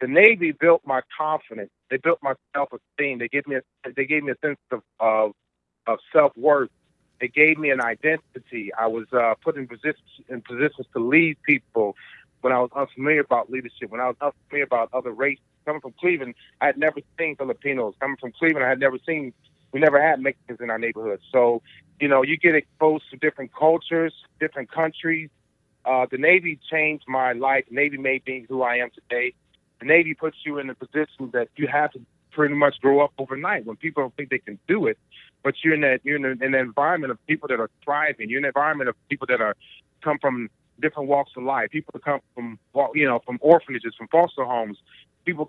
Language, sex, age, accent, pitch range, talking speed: English, male, 40-59, American, 125-155 Hz, 210 wpm